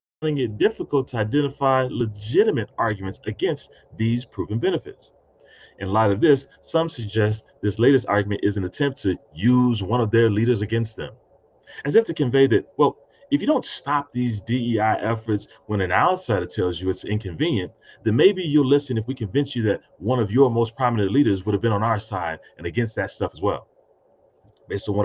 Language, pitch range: English, 100-140 Hz